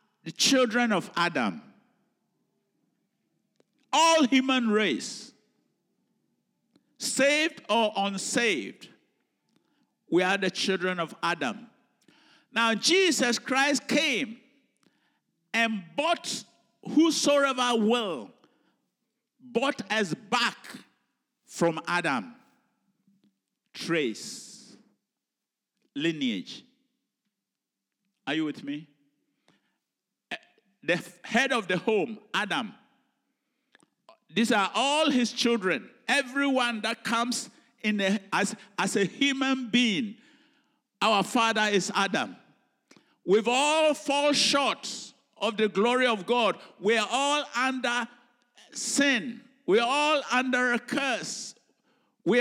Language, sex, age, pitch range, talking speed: English, male, 50-69, 215-265 Hz, 95 wpm